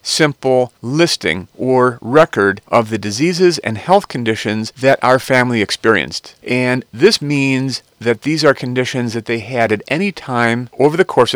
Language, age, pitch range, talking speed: English, 40-59, 110-145 Hz, 160 wpm